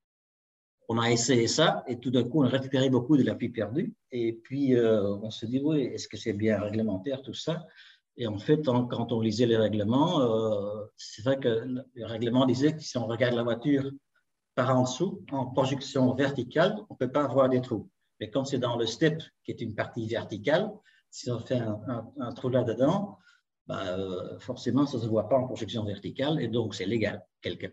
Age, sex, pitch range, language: 50-69, male, 110-135 Hz, French